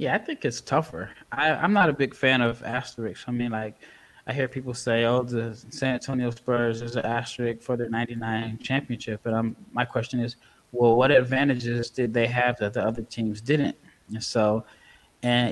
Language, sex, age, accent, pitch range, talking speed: English, male, 20-39, American, 115-130 Hz, 195 wpm